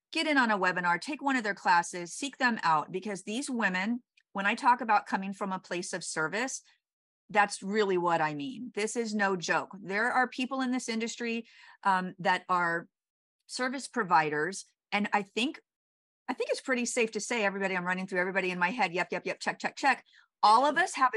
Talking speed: 210 wpm